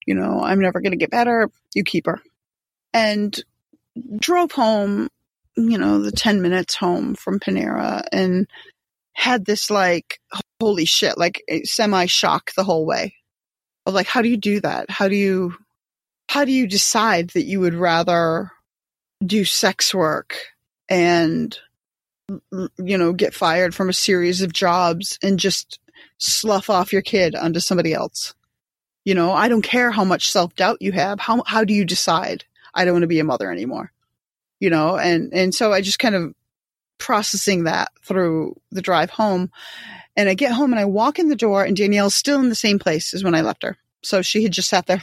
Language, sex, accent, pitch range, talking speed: English, female, American, 180-215 Hz, 185 wpm